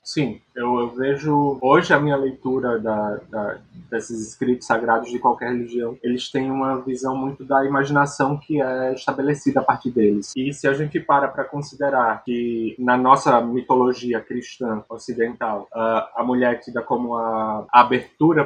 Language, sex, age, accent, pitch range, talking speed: Portuguese, male, 20-39, Brazilian, 120-140 Hz, 165 wpm